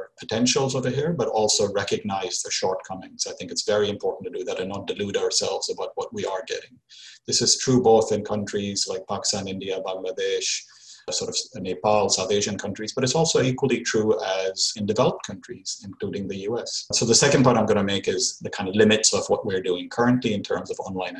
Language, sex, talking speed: English, male, 210 wpm